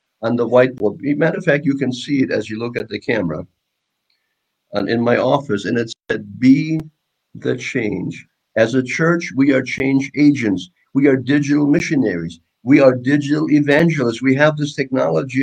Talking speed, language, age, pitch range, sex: 170 wpm, English, 50-69, 120-150 Hz, male